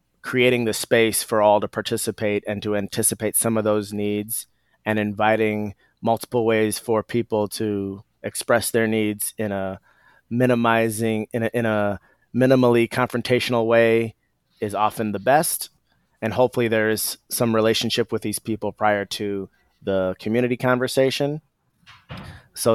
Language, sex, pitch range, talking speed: English, male, 100-115 Hz, 135 wpm